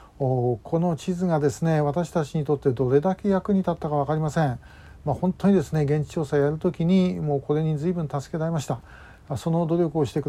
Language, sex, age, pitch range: Japanese, male, 40-59, 130-150 Hz